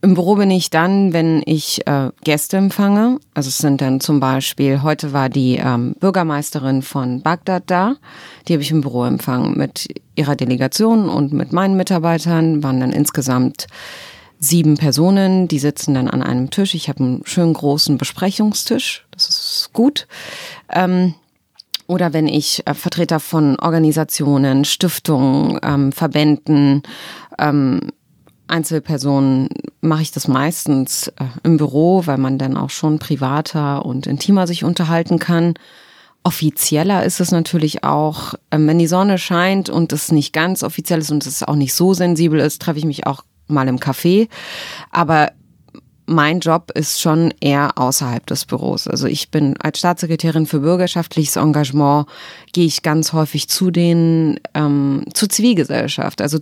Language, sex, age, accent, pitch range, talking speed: German, female, 30-49, German, 145-170 Hz, 155 wpm